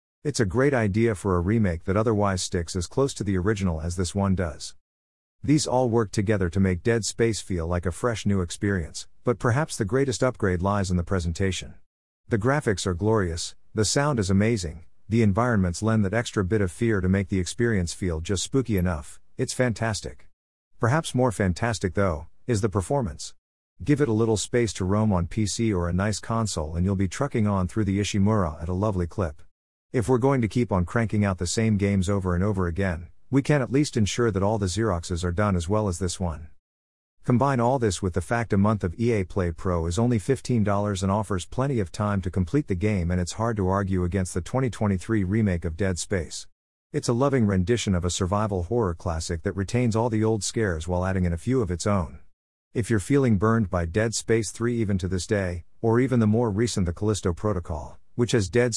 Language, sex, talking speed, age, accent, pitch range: English, male, 215 wpm, 50-69, American, 90-115 Hz